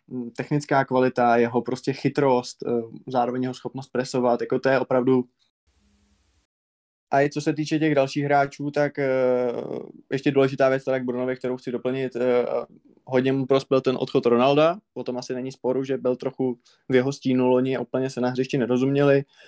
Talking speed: 165 wpm